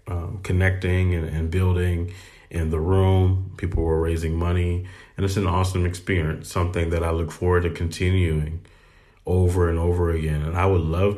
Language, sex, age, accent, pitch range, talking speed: English, male, 30-49, American, 85-95 Hz, 170 wpm